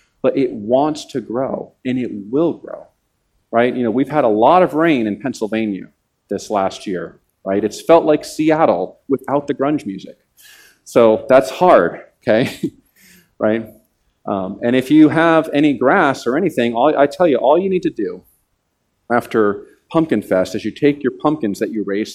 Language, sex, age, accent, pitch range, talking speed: English, male, 40-59, American, 110-160 Hz, 175 wpm